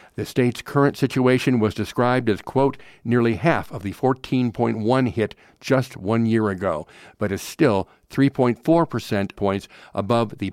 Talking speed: 150 wpm